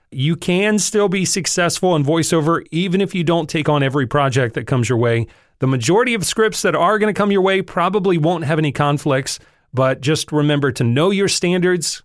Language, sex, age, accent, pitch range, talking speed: English, male, 40-59, American, 125-170 Hz, 210 wpm